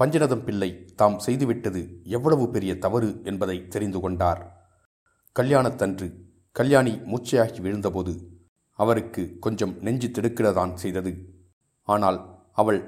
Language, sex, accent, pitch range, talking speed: Tamil, male, native, 90-115 Hz, 100 wpm